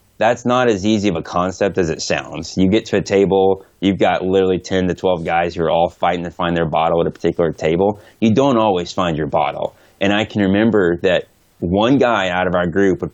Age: 20-39